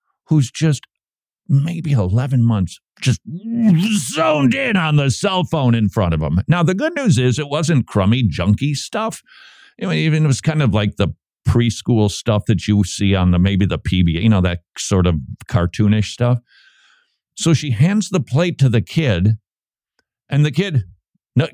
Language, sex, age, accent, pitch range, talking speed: English, male, 50-69, American, 100-155 Hz, 175 wpm